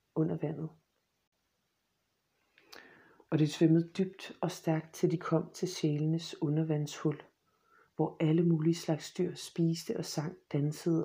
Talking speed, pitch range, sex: 125 wpm, 155-175 Hz, female